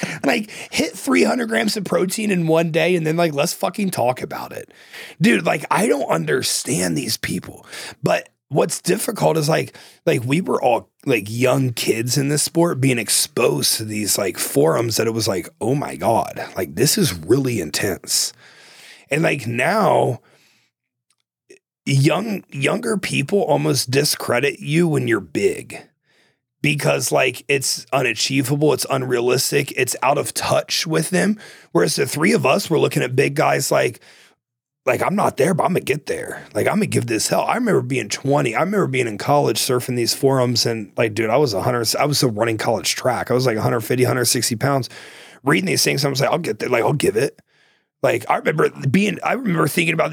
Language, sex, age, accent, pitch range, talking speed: English, male, 30-49, American, 120-165 Hz, 195 wpm